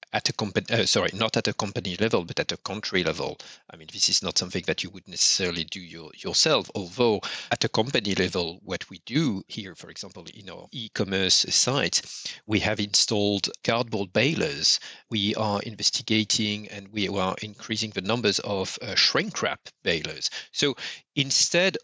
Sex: male